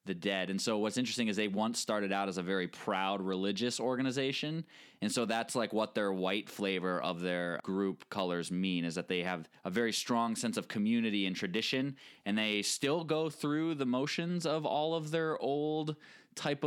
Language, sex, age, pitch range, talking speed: English, male, 20-39, 95-130 Hz, 200 wpm